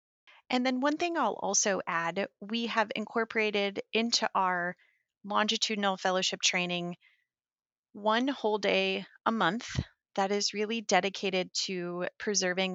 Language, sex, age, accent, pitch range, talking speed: English, female, 30-49, American, 185-225 Hz, 120 wpm